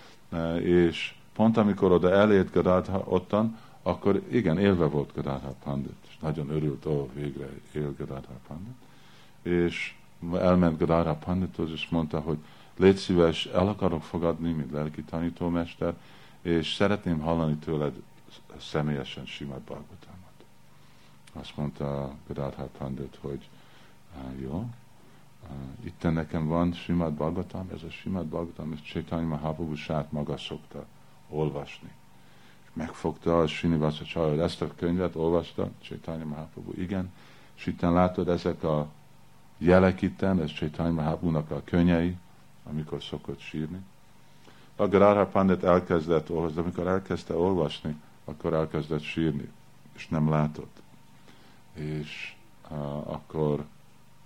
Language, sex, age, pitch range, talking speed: Hungarian, male, 50-69, 75-90 Hz, 120 wpm